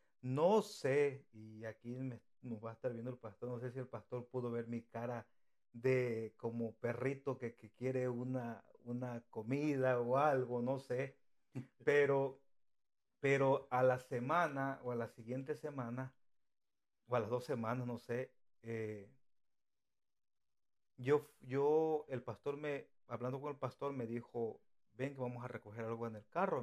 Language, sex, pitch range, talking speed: Spanish, male, 120-140 Hz, 160 wpm